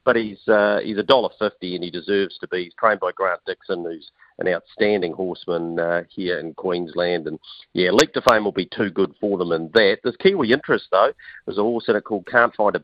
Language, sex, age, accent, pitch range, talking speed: English, male, 40-59, Australian, 90-110 Hz, 240 wpm